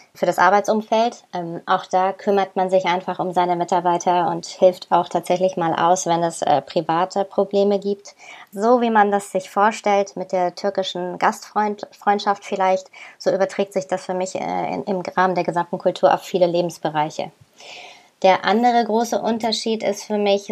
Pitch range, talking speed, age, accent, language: 185-205 Hz, 170 wpm, 20-39, German, German